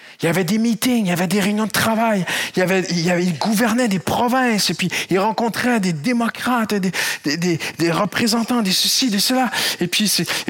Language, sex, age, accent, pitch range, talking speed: French, male, 40-59, French, 130-215 Hz, 230 wpm